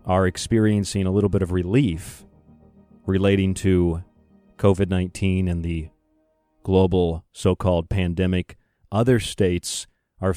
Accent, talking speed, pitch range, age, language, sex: American, 105 wpm, 90-105 Hz, 40-59, English, male